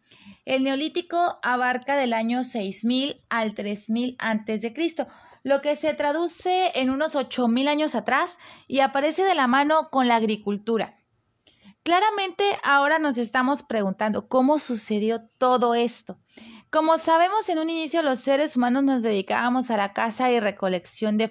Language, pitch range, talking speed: Spanish, 230-300 Hz, 145 wpm